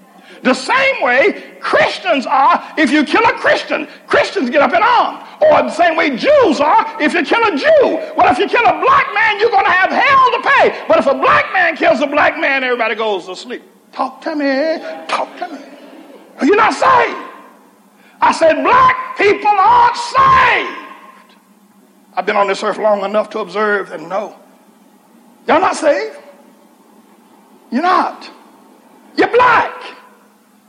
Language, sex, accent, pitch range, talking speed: English, male, American, 220-345 Hz, 170 wpm